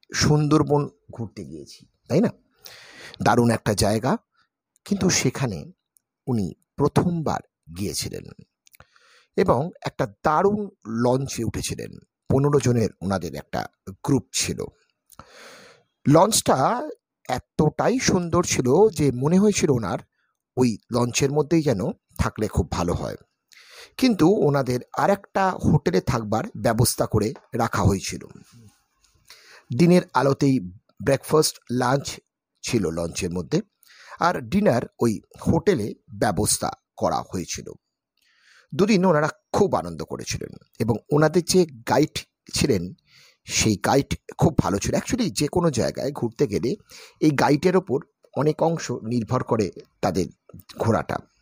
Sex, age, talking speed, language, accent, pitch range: male, 50-69, 50 wpm, Bengali, native, 115-165 Hz